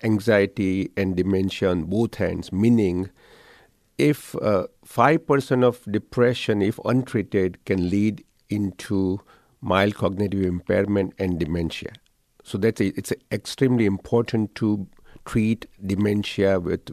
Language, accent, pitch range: English, Indian, 95-115 Hz